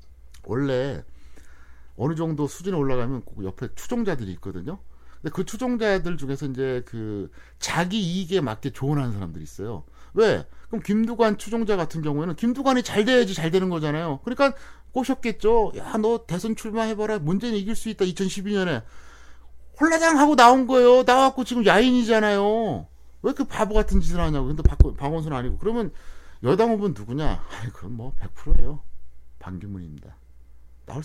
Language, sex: Korean, male